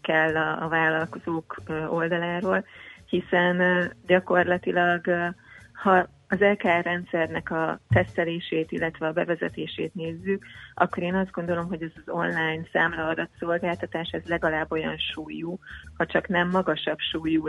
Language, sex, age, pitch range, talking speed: Hungarian, female, 30-49, 165-180 Hz, 120 wpm